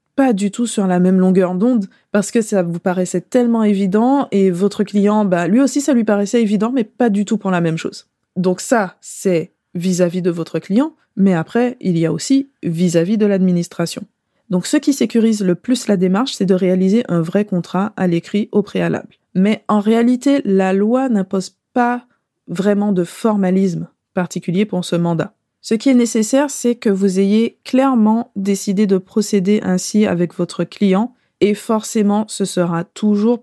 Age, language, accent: 20-39, French, French